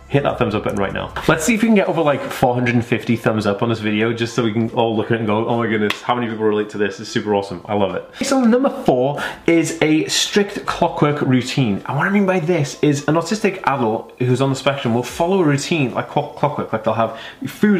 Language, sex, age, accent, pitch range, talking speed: English, male, 20-39, British, 110-145 Hz, 265 wpm